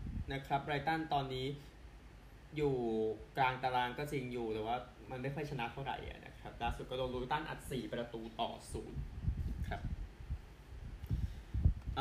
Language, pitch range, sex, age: Thai, 115-145 Hz, male, 20-39